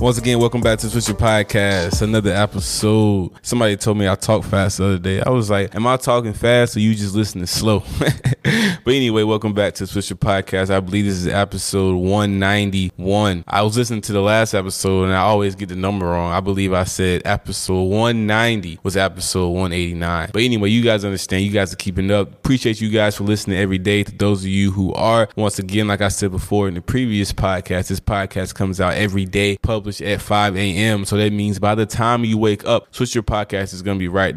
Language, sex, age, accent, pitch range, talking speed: English, male, 20-39, American, 95-105 Hz, 220 wpm